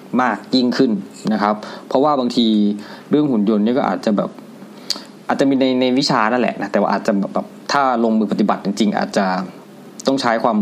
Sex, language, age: male, Thai, 20-39